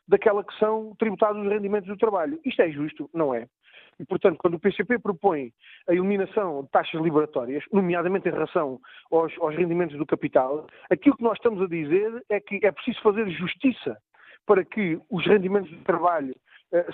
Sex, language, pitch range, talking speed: male, Portuguese, 160-205 Hz, 180 wpm